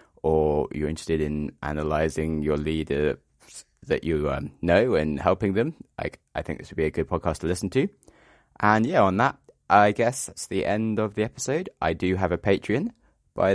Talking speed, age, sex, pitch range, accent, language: 195 wpm, 20-39, male, 75-95 Hz, British, English